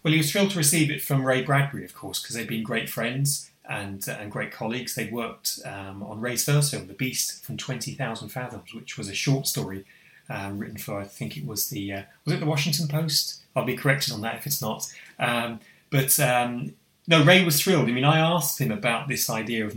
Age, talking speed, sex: 30-49, 235 wpm, male